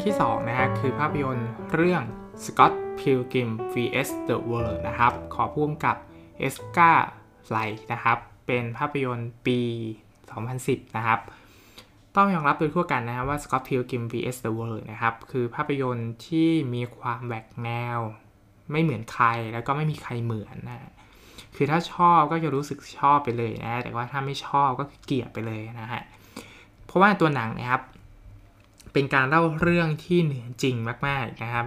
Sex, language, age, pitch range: male, Thai, 20-39, 115-140 Hz